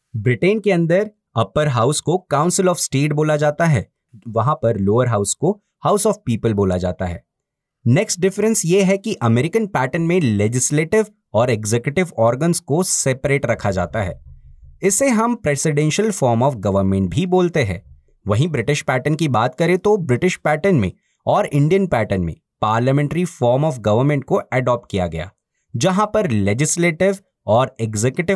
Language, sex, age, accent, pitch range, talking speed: Hindi, male, 30-49, native, 115-185 Hz, 160 wpm